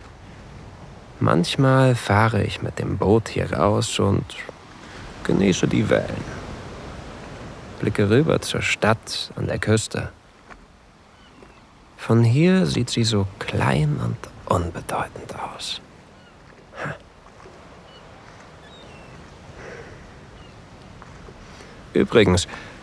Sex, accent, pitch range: male, German, 100-125 Hz